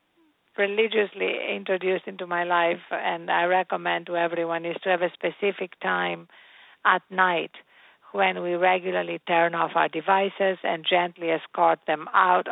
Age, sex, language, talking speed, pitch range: 50-69, female, English, 145 wpm, 175-210 Hz